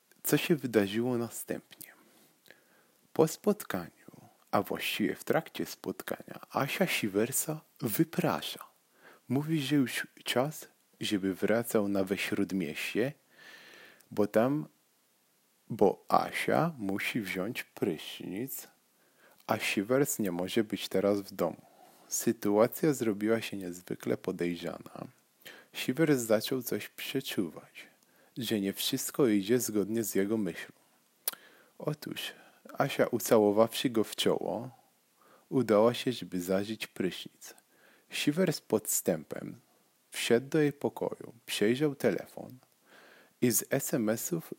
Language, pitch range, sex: Polish, 100-130 Hz, male